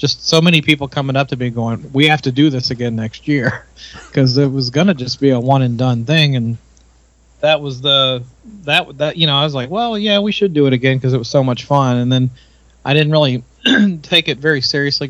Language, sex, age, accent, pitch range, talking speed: English, male, 30-49, American, 115-140 Hz, 245 wpm